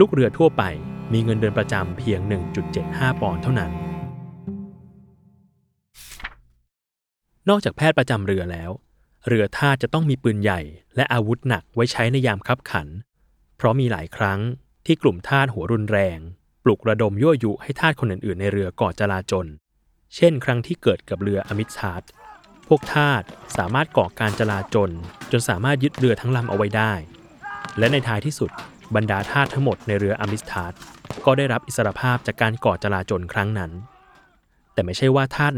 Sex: male